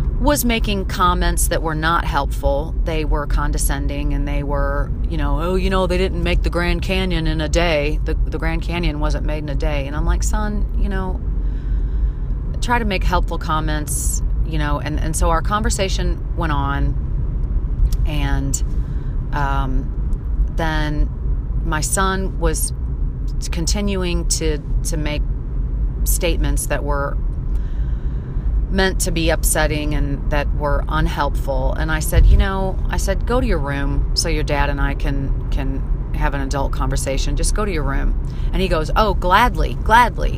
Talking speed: 165 wpm